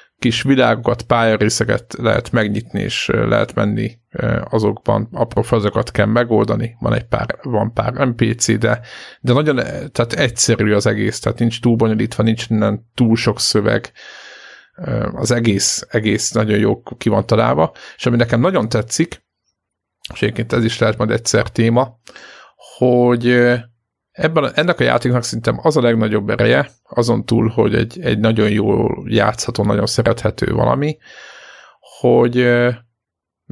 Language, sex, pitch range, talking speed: Hungarian, male, 110-125 Hz, 140 wpm